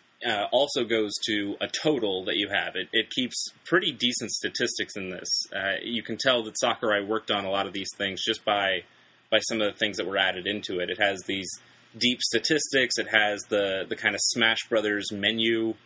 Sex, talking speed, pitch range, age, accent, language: male, 210 wpm, 100-115 Hz, 30-49, American, English